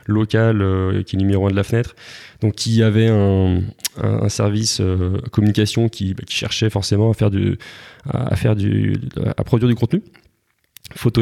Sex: male